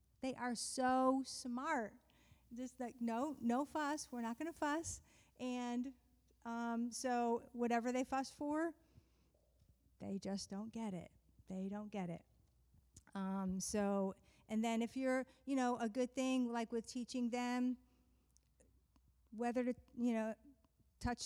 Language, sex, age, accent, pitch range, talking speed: English, female, 50-69, American, 215-255 Hz, 140 wpm